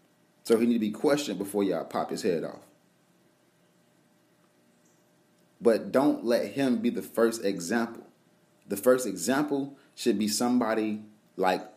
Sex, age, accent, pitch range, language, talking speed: male, 30-49, American, 95-125 Hz, English, 140 wpm